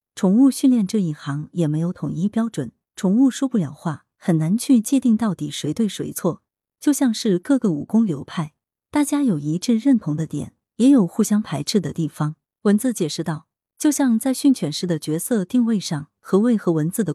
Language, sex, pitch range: Chinese, female, 160-220 Hz